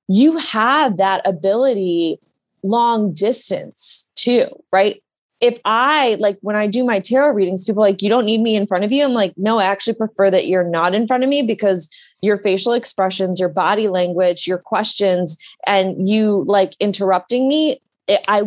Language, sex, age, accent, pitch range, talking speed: English, female, 20-39, American, 185-225 Hz, 185 wpm